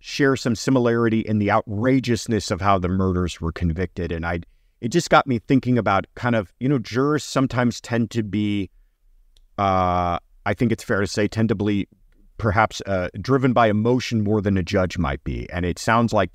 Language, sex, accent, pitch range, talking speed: English, male, American, 85-115 Hz, 200 wpm